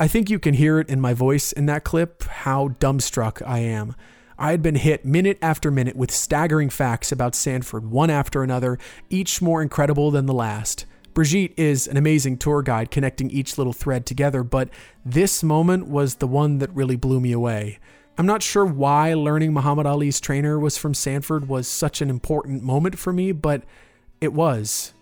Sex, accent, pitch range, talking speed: male, American, 125-155 Hz, 190 wpm